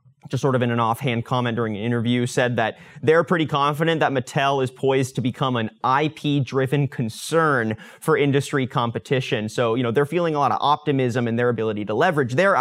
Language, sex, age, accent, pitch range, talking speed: English, male, 30-49, American, 125-160 Hz, 205 wpm